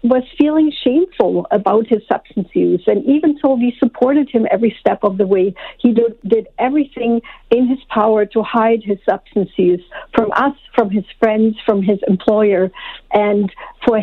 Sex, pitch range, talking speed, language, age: female, 210-250 Hz, 165 wpm, English, 60-79